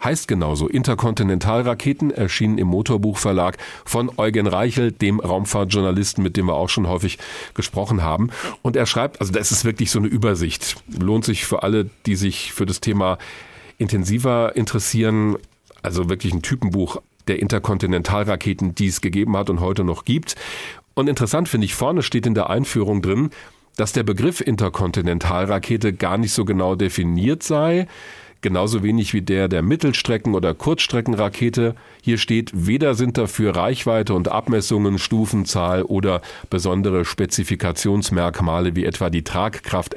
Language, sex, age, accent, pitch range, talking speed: German, male, 40-59, German, 90-115 Hz, 145 wpm